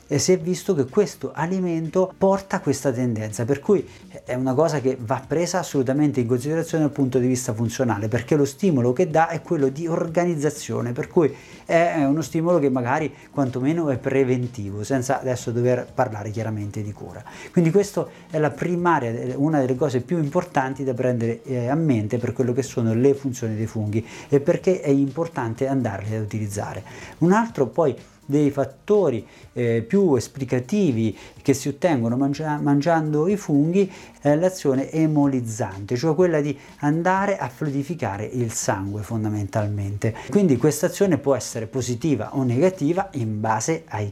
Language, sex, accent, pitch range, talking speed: Italian, male, native, 120-155 Hz, 160 wpm